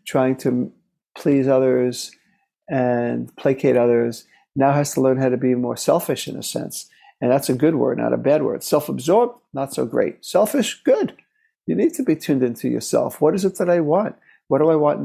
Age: 50-69